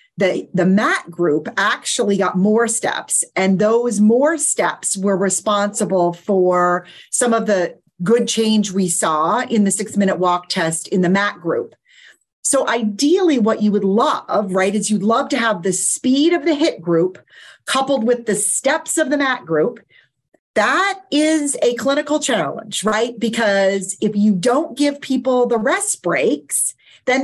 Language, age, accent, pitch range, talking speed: English, 40-59, American, 185-245 Hz, 165 wpm